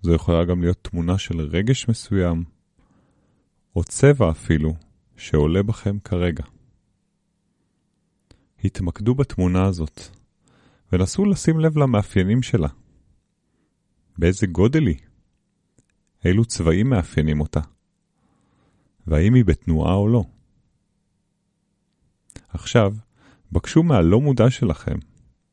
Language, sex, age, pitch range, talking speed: Hebrew, male, 30-49, 85-120 Hz, 90 wpm